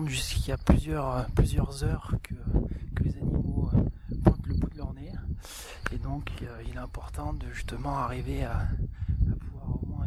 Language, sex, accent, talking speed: French, male, French, 175 wpm